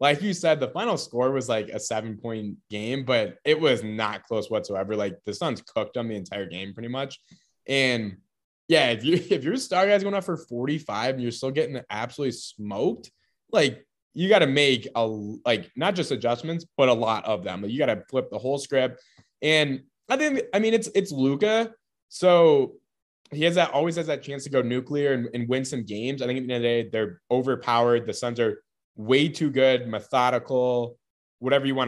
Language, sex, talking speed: English, male, 215 wpm